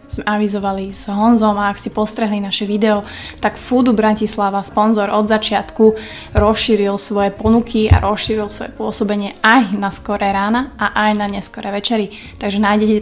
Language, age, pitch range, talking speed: Slovak, 20-39, 200-220 Hz, 155 wpm